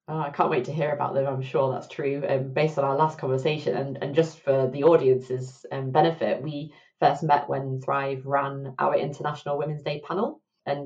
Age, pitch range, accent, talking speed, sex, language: 20-39, 135-165 Hz, British, 205 wpm, female, English